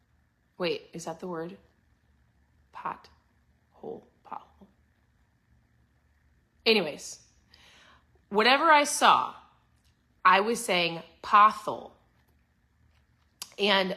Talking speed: 70 wpm